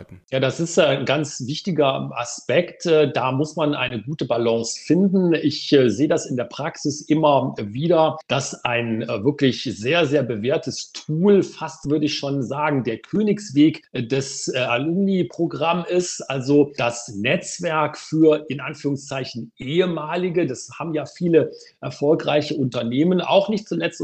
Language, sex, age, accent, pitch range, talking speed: German, male, 40-59, German, 135-160 Hz, 135 wpm